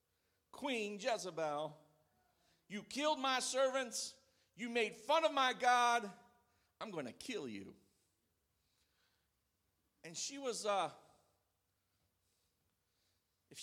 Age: 50-69